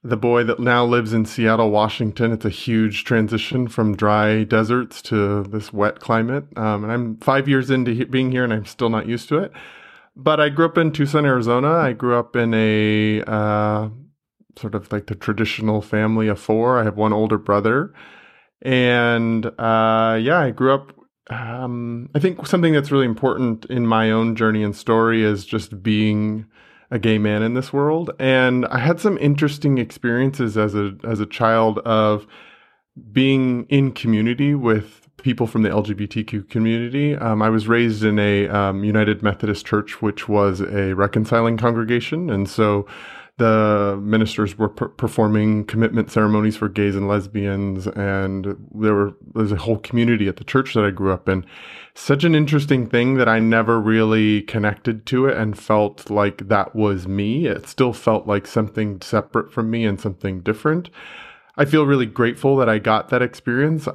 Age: 20-39